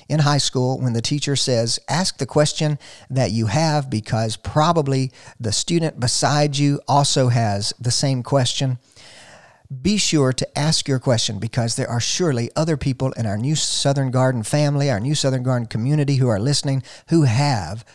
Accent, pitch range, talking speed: American, 120-150 Hz, 175 wpm